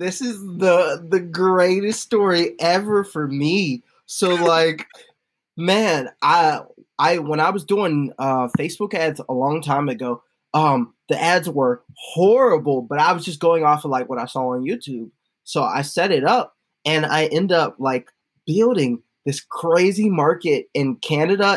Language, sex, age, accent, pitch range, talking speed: English, male, 20-39, American, 140-190 Hz, 165 wpm